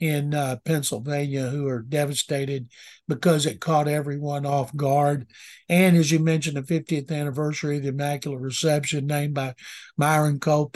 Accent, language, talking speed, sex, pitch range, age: American, English, 150 wpm, male, 145-170 Hz, 60-79